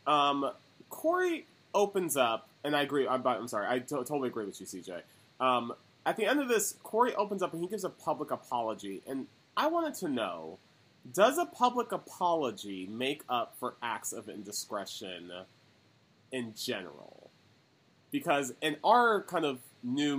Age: 30-49